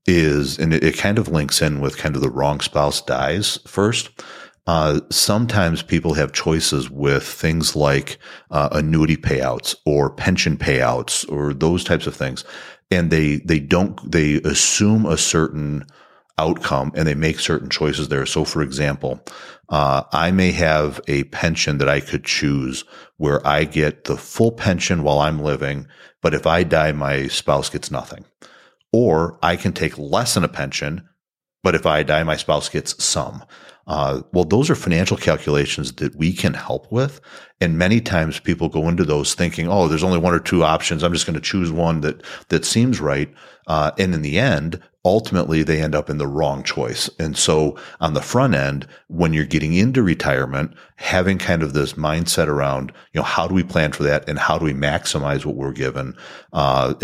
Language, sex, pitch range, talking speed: English, male, 70-85 Hz, 185 wpm